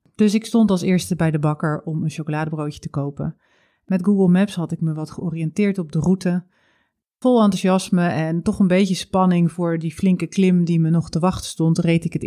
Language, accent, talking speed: Dutch, Dutch, 215 wpm